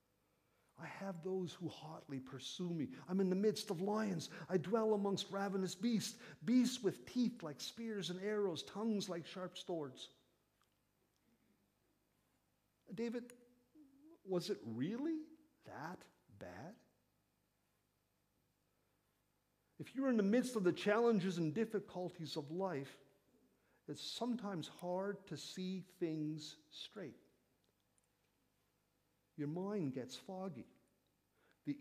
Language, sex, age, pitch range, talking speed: English, male, 50-69, 165-220 Hz, 110 wpm